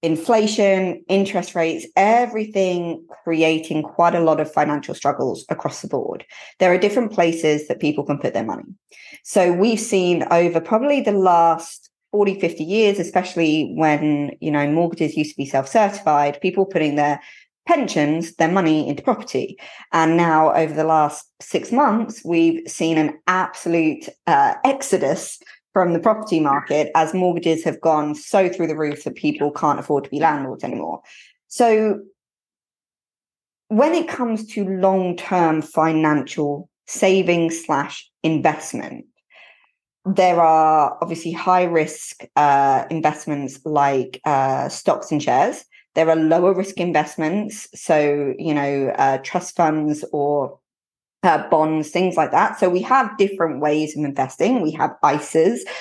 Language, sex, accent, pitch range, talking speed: English, female, British, 150-195 Hz, 140 wpm